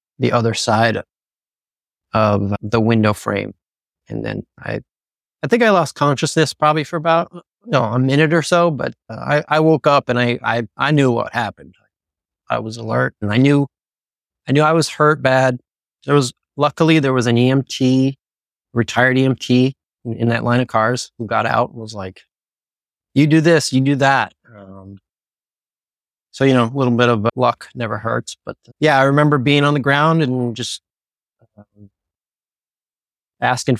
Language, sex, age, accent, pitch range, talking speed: English, male, 30-49, American, 115-145 Hz, 170 wpm